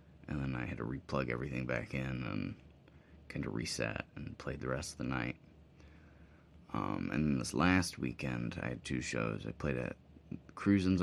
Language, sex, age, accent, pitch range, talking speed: English, male, 30-49, American, 70-80 Hz, 185 wpm